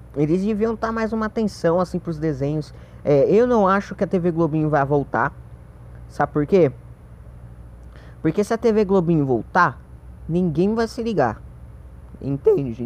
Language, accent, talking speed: Portuguese, Brazilian, 155 wpm